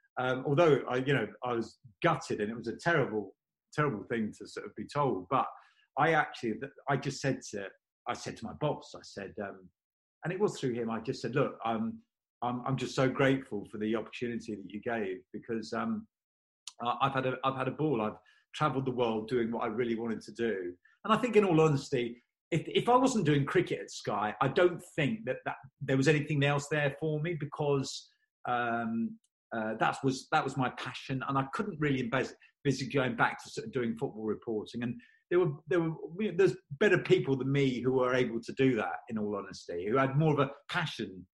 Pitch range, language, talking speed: 115-155 Hz, English, 220 wpm